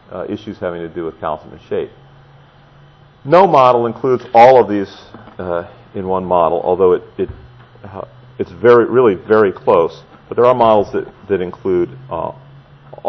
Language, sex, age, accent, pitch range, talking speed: English, male, 40-59, American, 90-125 Hz, 165 wpm